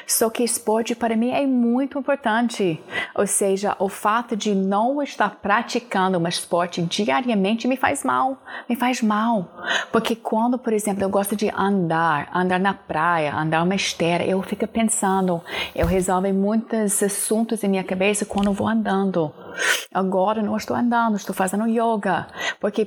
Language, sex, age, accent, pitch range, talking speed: Portuguese, female, 30-49, Brazilian, 185-230 Hz, 155 wpm